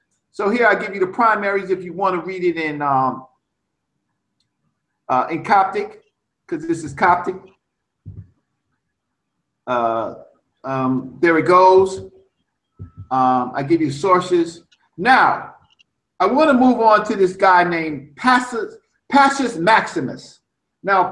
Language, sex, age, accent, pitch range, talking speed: English, male, 50-69, American, 180-265 Hz, 130 wpm